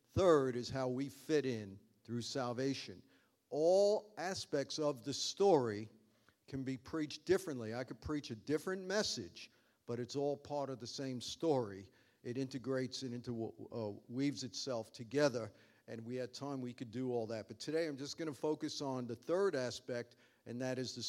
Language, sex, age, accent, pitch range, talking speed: English, male, 50-69, American, 125-150 Hz, 175 wpm